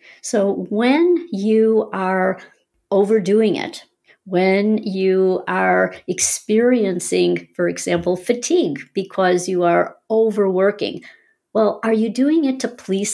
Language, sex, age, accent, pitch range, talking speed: English, female, 50-69, American, 175-225 Hz, 110 wpm